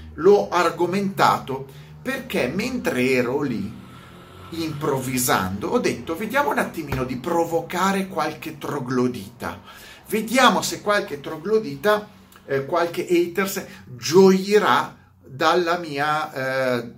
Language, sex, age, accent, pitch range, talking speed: Italian, male, 40-59, native, 125-180 Hz, 95 wpm